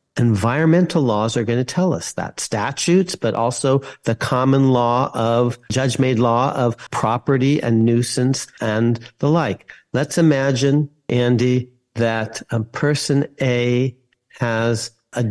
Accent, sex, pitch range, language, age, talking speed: American, male, 115-140 Hz, English, 50-69, 135 wpm